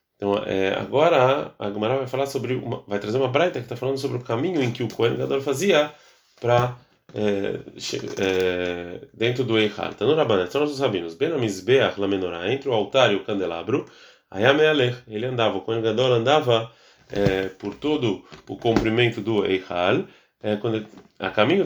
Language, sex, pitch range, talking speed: Portuguese, male, 100-135 Hz, 175 wpm